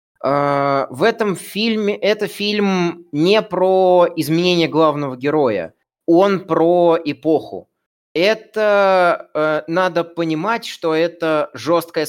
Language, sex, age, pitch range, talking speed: Russian, male, 20-39, 145-195 Hz, 95 wpm